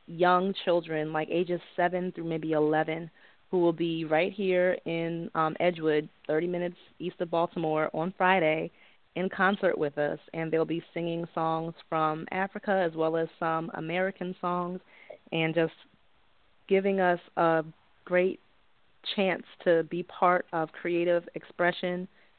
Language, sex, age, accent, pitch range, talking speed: English, female, 20-39, American, 165-185 Hz, 140 wpm